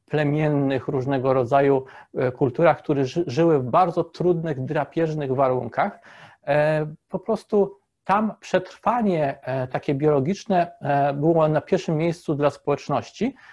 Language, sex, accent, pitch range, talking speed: Polish, male, native, 140-175 Hz, 105 wpm